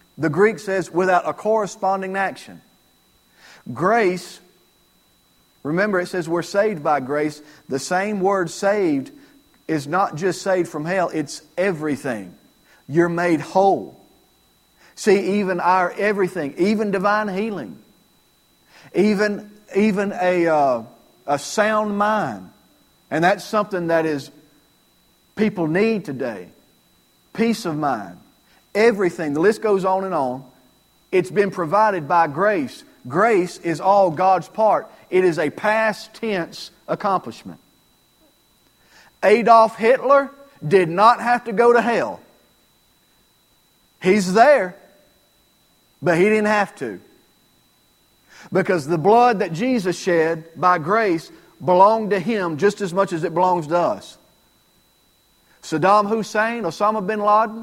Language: English